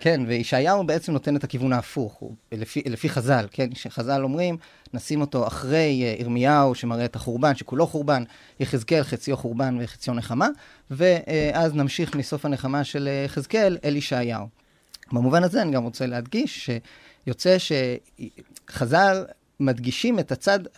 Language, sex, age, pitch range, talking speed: Hebrew, male, 30-49, 125-160 Hz, 135 wpm